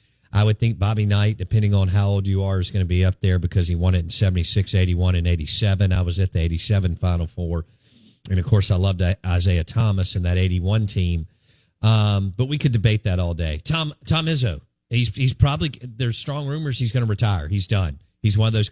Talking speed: 230 wpm